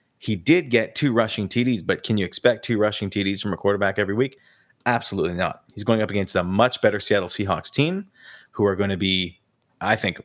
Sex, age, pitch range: male, 30-49, 95-125 Hz